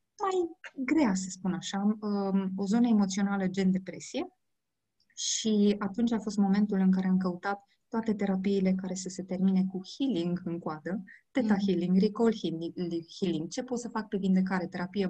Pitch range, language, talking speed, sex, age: 190-245 Hz, Romanian, 165 wpm, female, 20-39